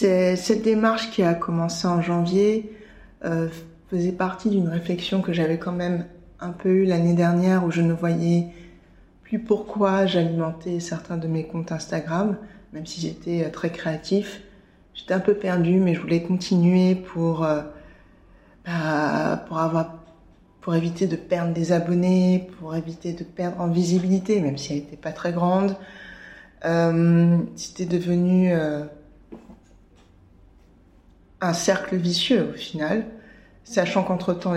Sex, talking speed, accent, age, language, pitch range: female, 140 wpm, French, 20-39, French, 160-185 Hz